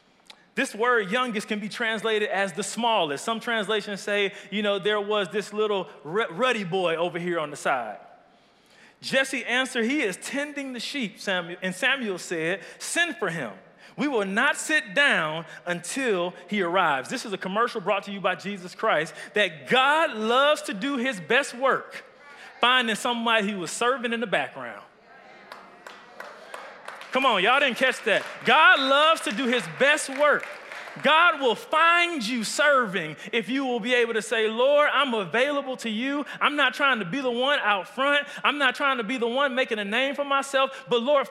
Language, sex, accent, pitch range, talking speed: English, male, American, 210-275 Hz, 180 wpm